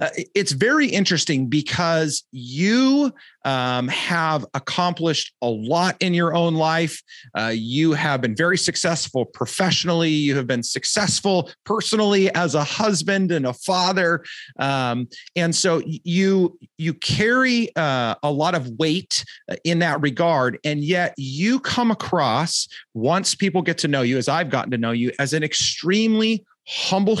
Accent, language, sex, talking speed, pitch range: American, English, male, 150 wpm, 135-185 Hz